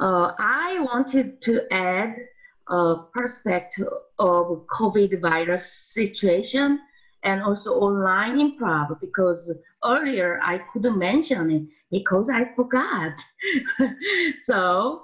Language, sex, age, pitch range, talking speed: English, female, 30-49, 180-255 Hz, 100 wpm